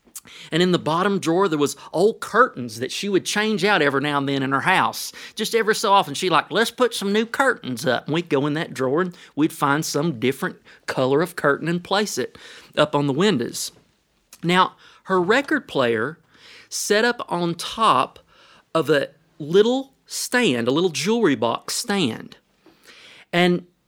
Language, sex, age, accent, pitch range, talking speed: English, male, 40-59, American, 135-200 Hz, 180 wpm